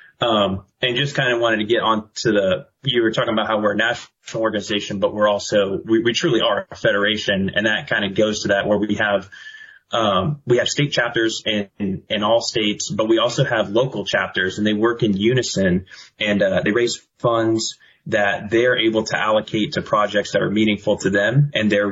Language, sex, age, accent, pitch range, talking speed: English, male, 20-39, American, 105-120 Hz, 215 wpm